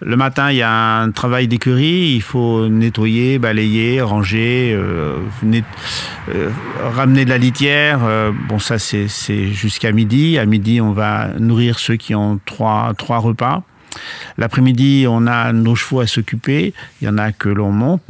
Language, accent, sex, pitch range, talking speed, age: French, French, male, 110-130 Hz, 170 wpm, 50-69